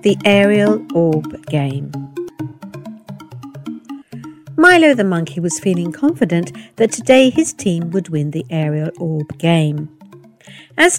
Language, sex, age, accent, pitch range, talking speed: English, female, 60-79, British, 160-235 Hz, 115 wpm